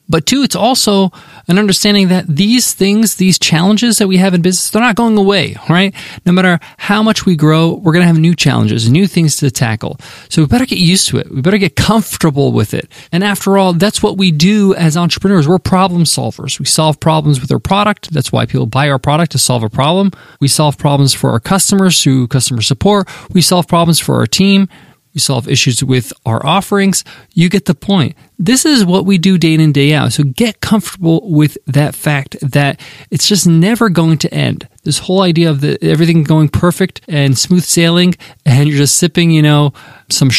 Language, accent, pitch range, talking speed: English, American, 140-185 Hz, 210 wpm